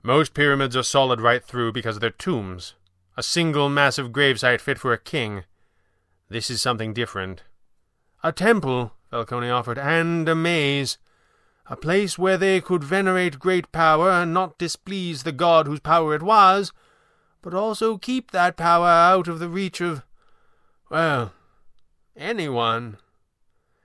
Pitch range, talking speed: 115-165 Hz, 145 wpm